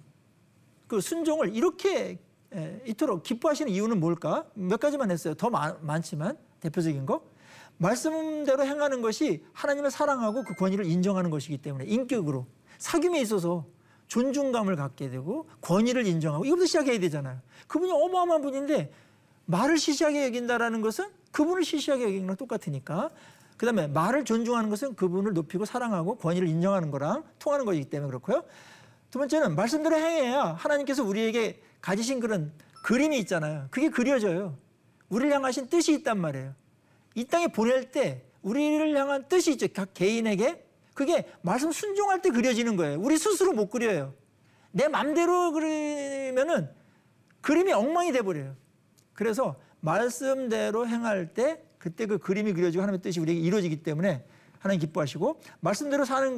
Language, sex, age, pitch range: Korean, male, 40-59, 175-290 Hz